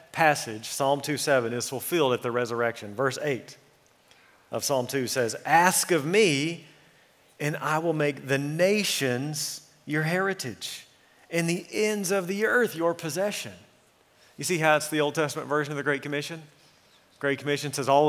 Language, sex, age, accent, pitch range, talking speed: English, male, 40-59, American, 125-150 Hz, 165 wpm